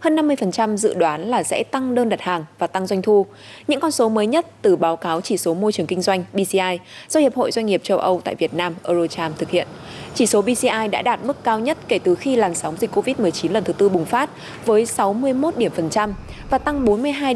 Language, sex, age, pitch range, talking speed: Vietnamese, female, 20-39, 175-245 Hz, 240 wpm